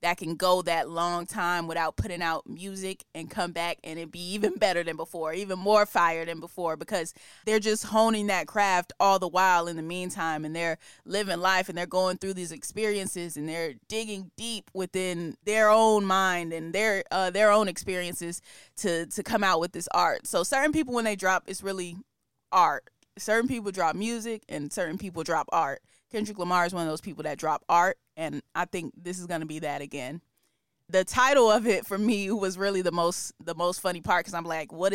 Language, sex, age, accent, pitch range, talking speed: English, female, 20-39, American, 170-195 Hz, 215 wpm